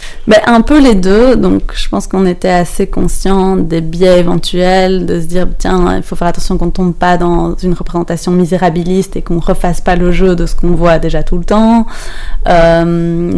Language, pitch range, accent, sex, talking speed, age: French, 175-200 Hz, French, female, 210 wpm, 20-39